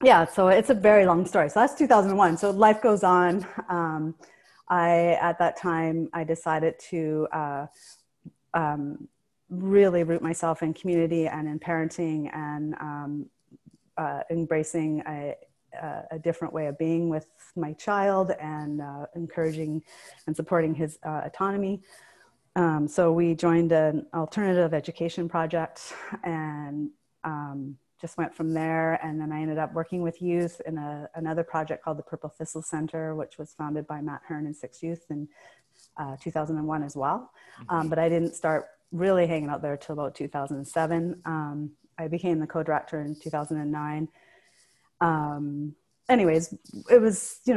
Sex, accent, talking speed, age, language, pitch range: female, American, 155 wpm, 30-49, English, 150-170 Hz